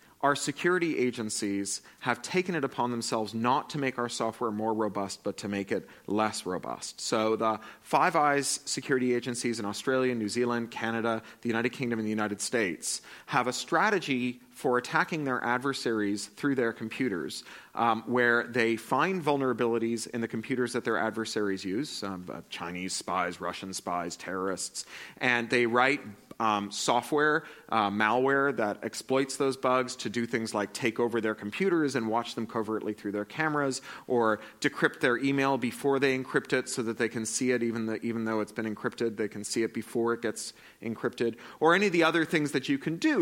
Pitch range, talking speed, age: 110-145 Hz, 185 wpm, 30-49